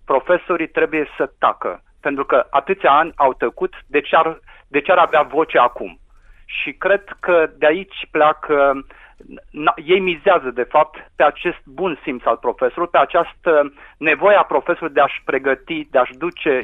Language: Romanian